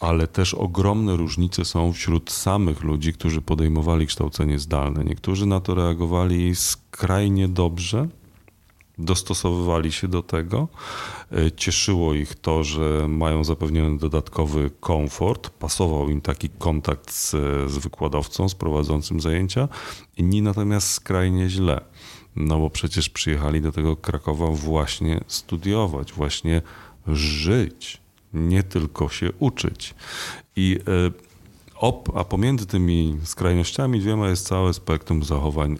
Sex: male